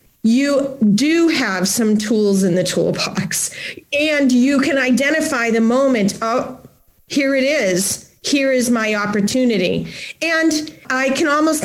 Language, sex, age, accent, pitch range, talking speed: English, female, 40-59, American, 220-280 Hz, 135 wpm